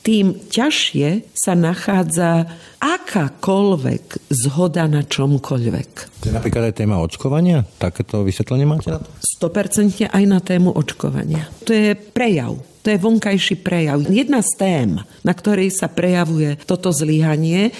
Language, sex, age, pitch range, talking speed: Slovak, female, 50-69, 145-205 Hz, 120 wpm